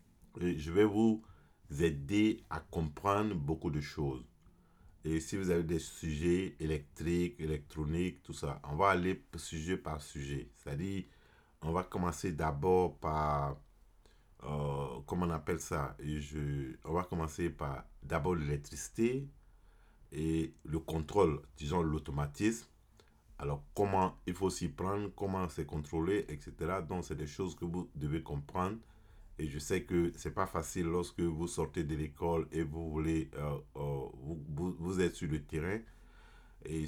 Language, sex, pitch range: French, male, 75-95 Hz